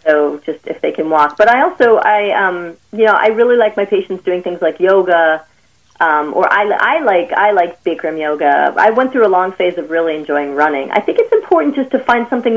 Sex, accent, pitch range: female, American, 170-220 Hz